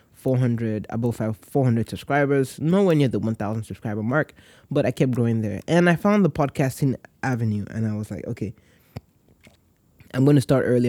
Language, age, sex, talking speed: English, 20-39, male, 180 wpm